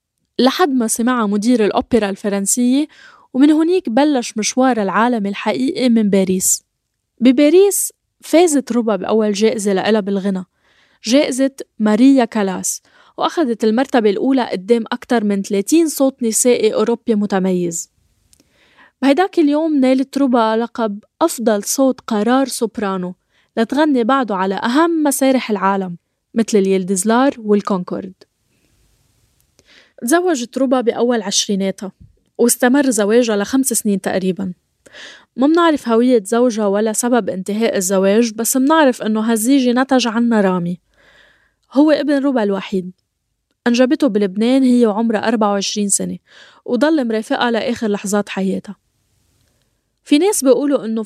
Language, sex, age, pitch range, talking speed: Arabic, female, 10-29, 200-260 Hz, 110 wpm